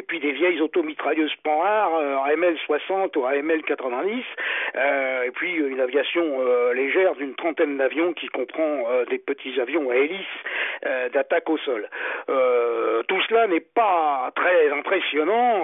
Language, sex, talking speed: French, male, 155 wpm